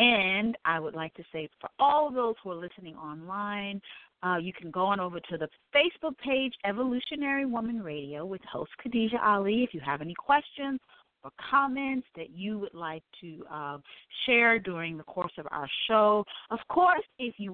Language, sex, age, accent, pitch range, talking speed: English, female, 40-59, American, 165-255 Hz, 190 wpm